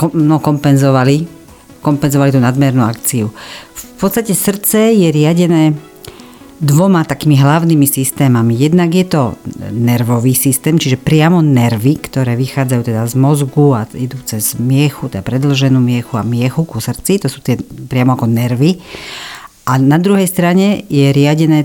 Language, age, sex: Slovak, 50-69, female